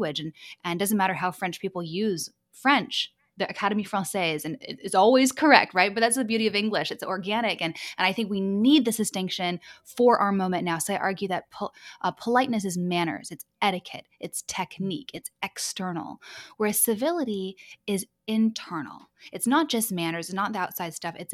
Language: English